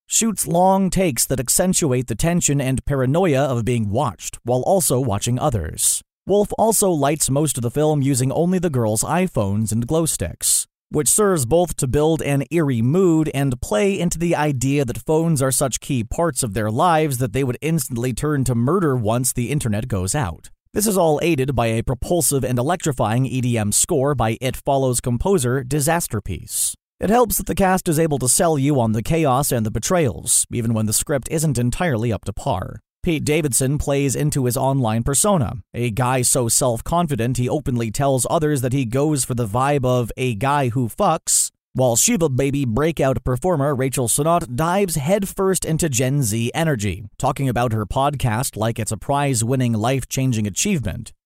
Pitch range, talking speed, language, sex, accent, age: 120-160 Hz, 180 wpm, English, male, American, 30-49